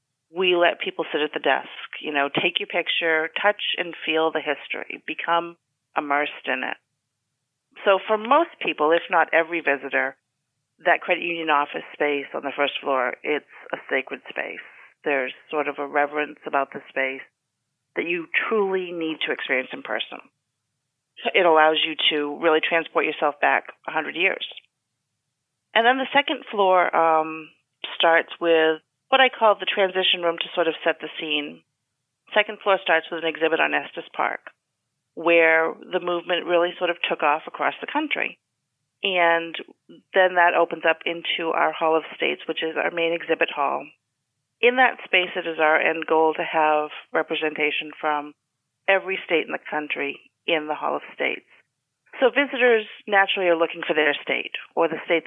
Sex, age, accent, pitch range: female, 40-59, American, 145-180 Hz